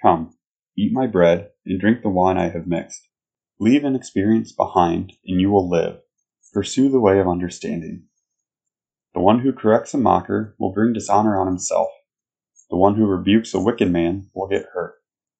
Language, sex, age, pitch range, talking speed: English, male, 20-39, 90-110 Hz, 175 wpm